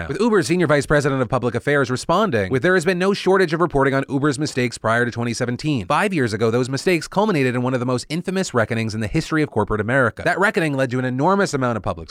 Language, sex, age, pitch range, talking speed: English, male, 30-49, 115-165 Hz, 255 wpm